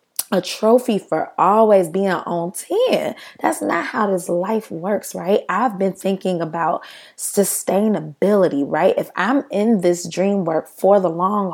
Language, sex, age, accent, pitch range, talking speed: English, female, 20-39, American, 175-220 Hz, 150 wpm